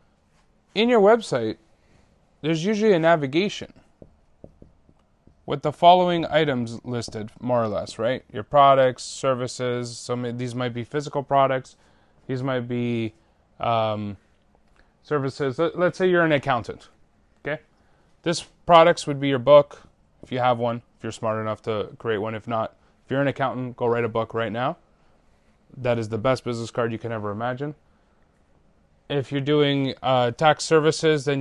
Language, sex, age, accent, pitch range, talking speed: English, male, 20-39, American, 115-150 Hz, 155 wpm